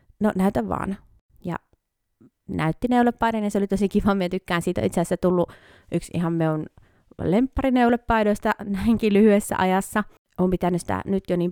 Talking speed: 160 wpm